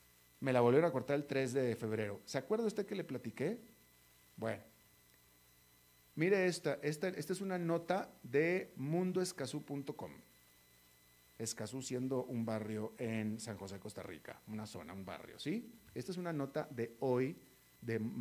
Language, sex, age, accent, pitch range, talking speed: Spanish, male, 40-59, Mexican, 110-165 Hz, 155 wpm